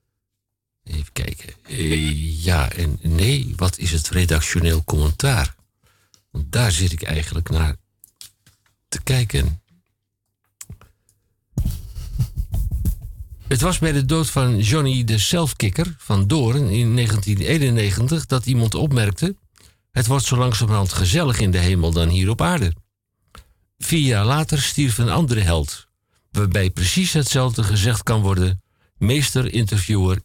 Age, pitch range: 60-79, 90-115 Hz